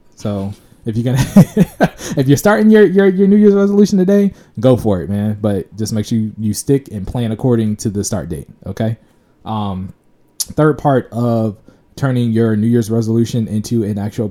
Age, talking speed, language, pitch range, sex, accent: 20-39, 185 wpm, English, 105-140 Hz, male, American